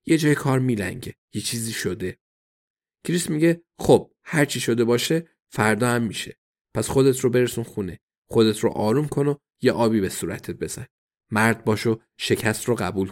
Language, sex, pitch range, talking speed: Persian, male, 110-145 Hz, 170 wpm